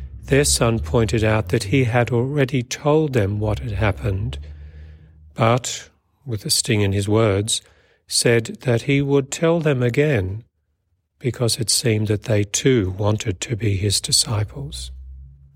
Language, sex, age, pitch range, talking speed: English, male, 40-59, 80-120 Hz, 145 wpm